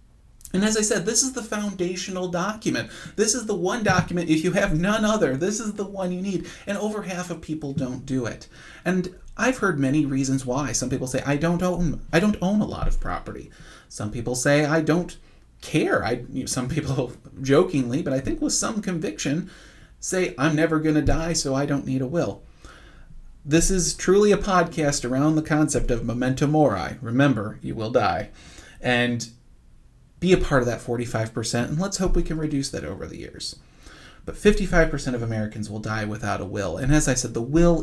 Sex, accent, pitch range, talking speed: male, American, 125-175 Hz, 205 wpm